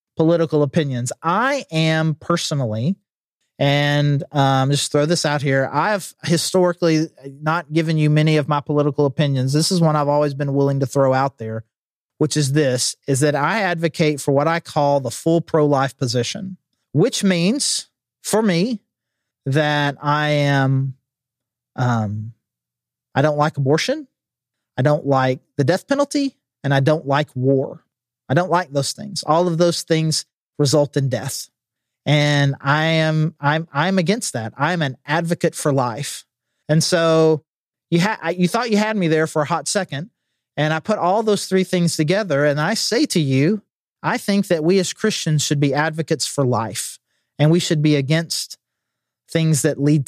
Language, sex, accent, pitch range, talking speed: English, male, American, 140-170 Hz, 170 wpm